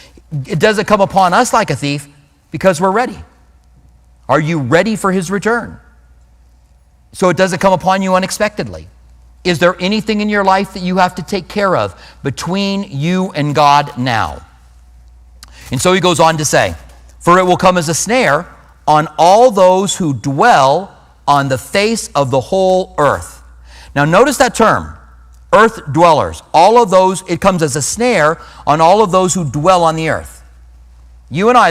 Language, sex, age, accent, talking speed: English, male, 50-69, American, 180 wpm